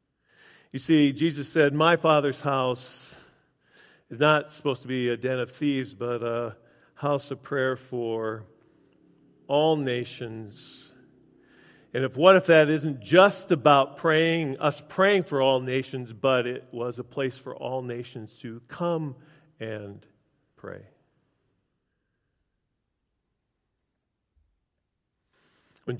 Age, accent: 50-69, American